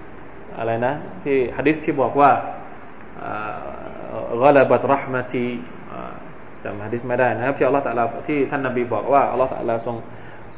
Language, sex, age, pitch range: Thai, male, 20-39, 130-175 Hz